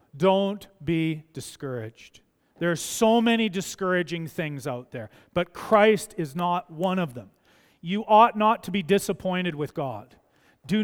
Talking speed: 150 wpm